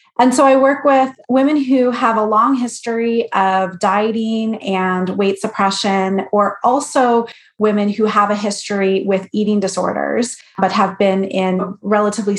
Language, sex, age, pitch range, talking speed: English, female, 30-49, 190-230 Hz, 150 wpm